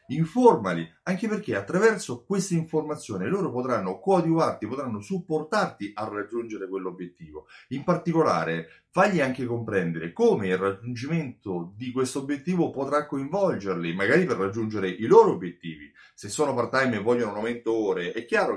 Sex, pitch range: male, 95-150 Hz